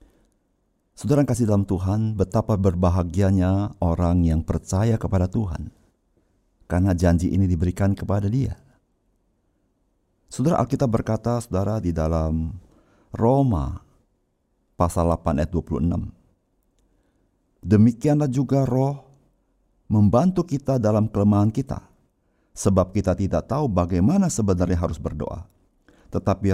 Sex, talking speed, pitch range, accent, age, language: male, 100 wpm, 90-120 Hz, native, 50-69, Indonesian